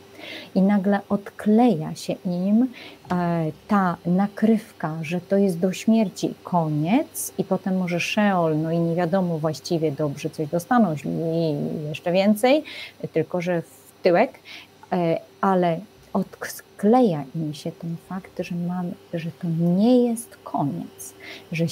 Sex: female